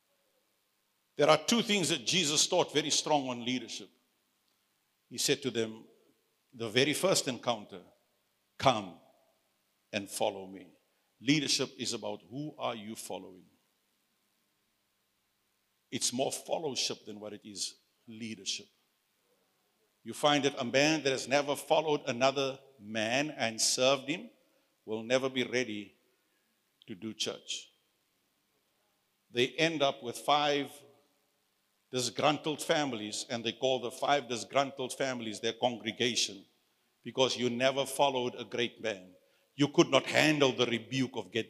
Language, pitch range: English, 115-145 Hz